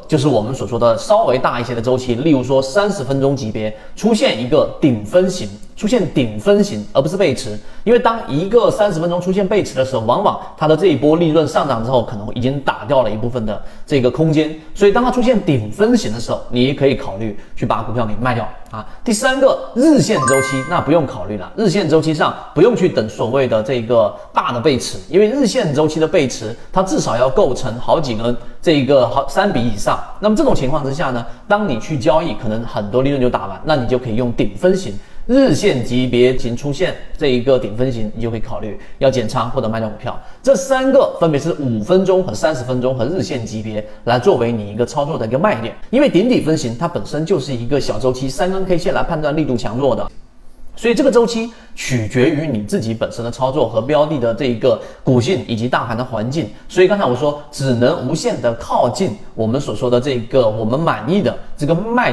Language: Chinese